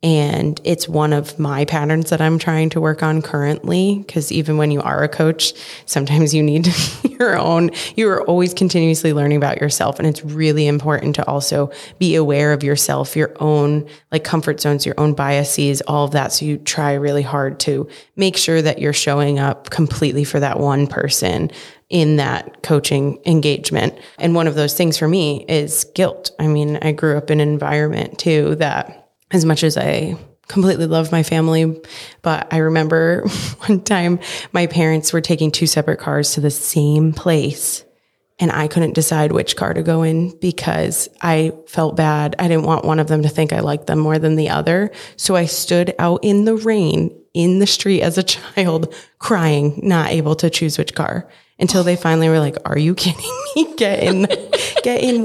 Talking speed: 195 wpm